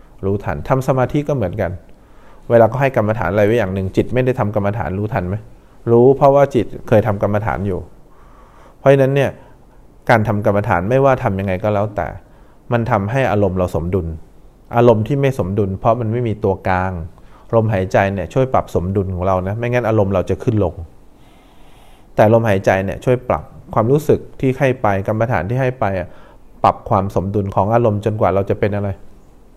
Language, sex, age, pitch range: English, male, 20-39, 95-120 Hz